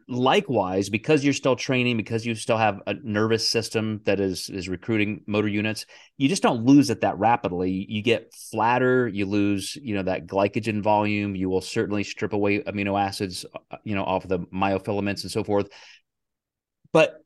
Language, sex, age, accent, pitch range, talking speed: English, male, 30-49, American, 95-115 Hz, 175 wpm